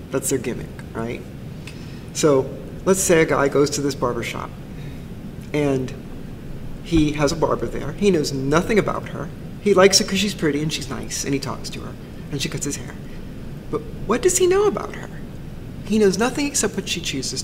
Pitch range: 135-175 Hz